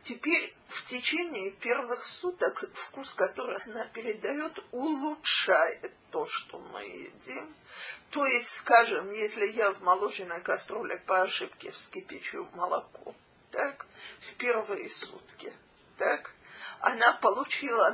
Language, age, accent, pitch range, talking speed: Russian, 50-69, native, 230-355 Hz, 110 wpm